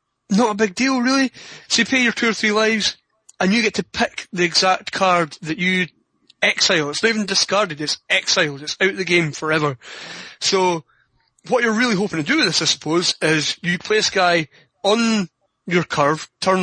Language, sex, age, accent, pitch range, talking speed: English, male, 30-49, British, 160-215 Hz, 200 wpm